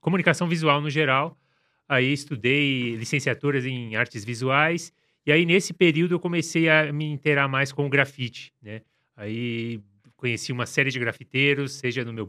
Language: Portuguese